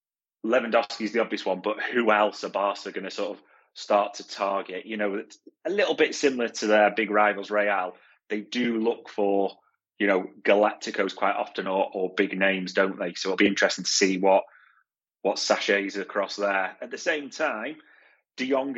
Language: English